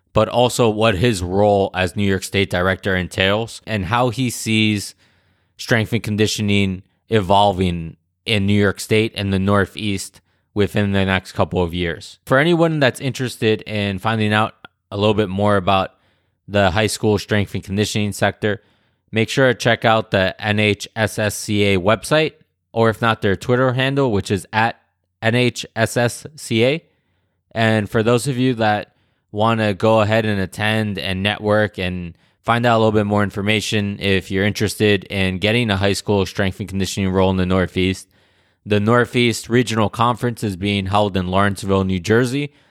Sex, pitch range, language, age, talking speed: male, 95-115 Hz, English, 20-39, 165 wpm